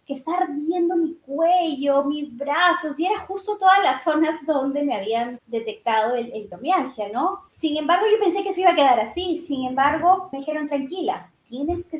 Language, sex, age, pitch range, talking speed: Spanish, female, 30-49, 235-335 Hz, 180 wpm